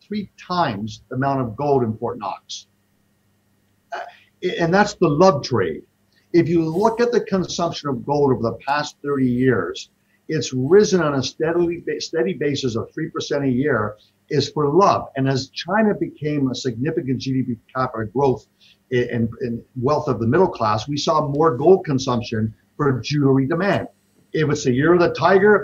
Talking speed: 170 wpm